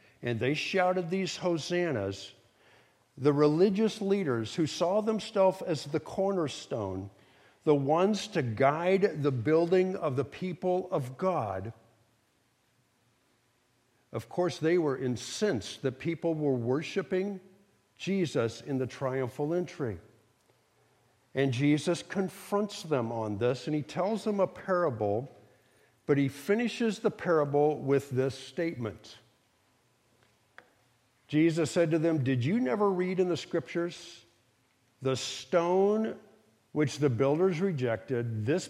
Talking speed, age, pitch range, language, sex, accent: 120 wpm, 60-79, 125-175 Hz, English, male, American